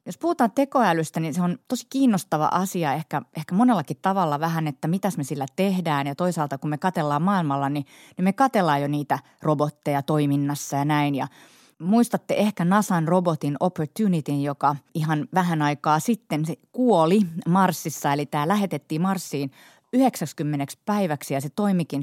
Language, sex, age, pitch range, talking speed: Finnish, female, 30-49, 145-185 Hz, 155 wpm